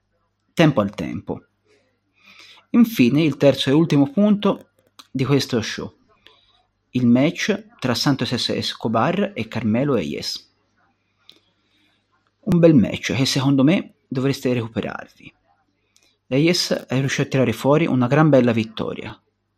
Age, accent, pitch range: 40-59, native, 115-145 Hz